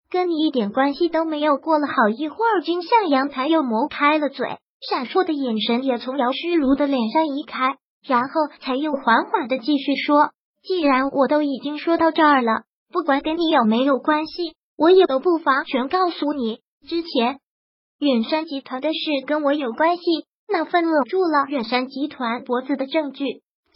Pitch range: 265-330 Hz